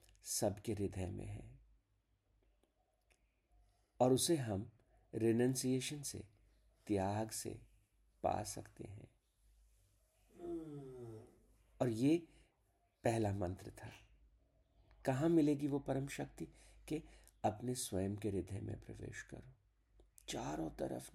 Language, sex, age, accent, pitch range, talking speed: Hindi, male, 50-69, native, 100-125 Hz, 100 wpm